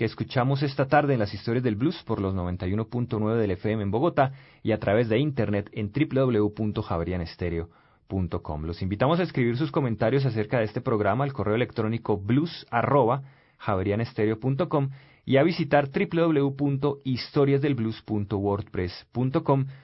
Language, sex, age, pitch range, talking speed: Spanish, male, 30-49, 105-145 Hz, 125 wpm